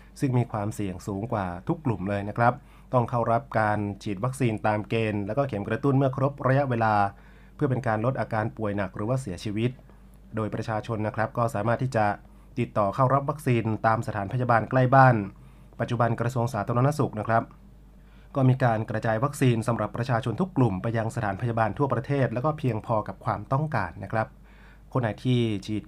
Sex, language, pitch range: male, Thai, 105-135 Hz